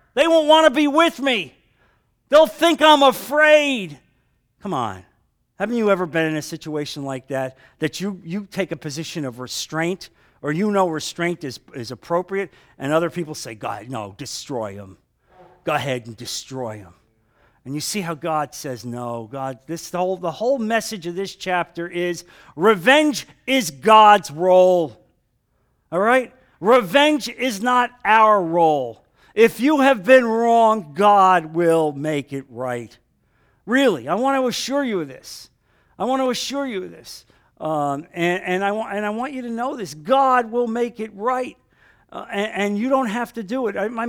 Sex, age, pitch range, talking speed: male, 50-69, 155-240 Hz, 180 wpm